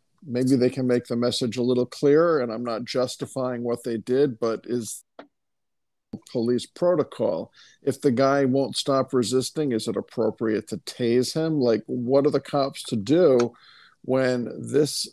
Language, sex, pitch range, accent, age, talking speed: English, male, 120-140 Hz, American, 50-69, 165 wpm